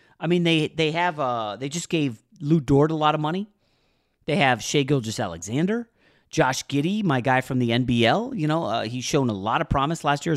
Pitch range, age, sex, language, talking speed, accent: 115-155 Hz, 30-49, male, English, 220 wpm, American